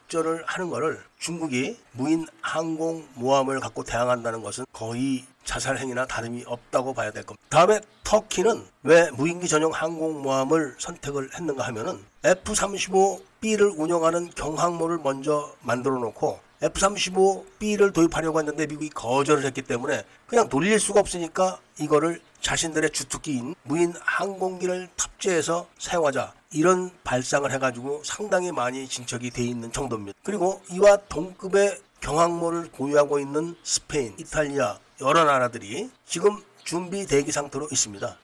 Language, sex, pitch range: Korean, male, 135-185 Hz